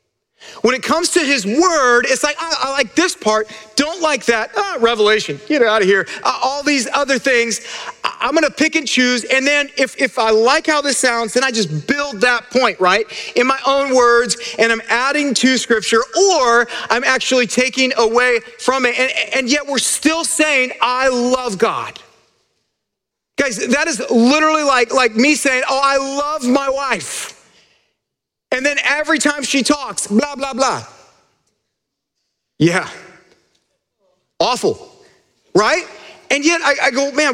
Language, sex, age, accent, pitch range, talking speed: English, male, 40-59, American, 215-285 Hz, 165 wpm